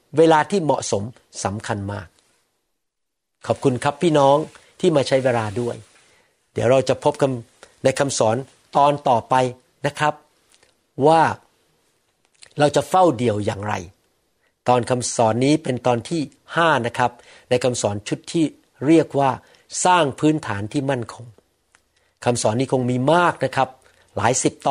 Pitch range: 115-150 Hz